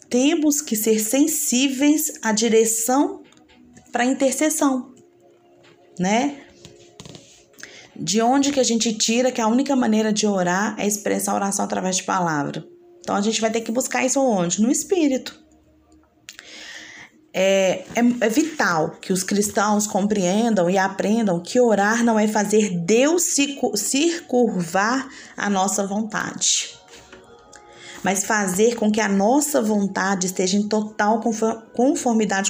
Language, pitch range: Portuguese, 195-260 Hz